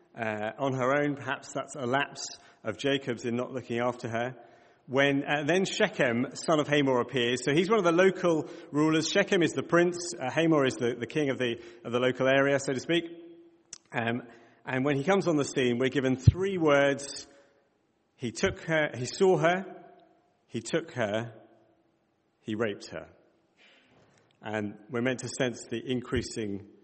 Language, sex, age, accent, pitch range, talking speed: English, male, 40-59, British, 115-150 Hz, 180 wpm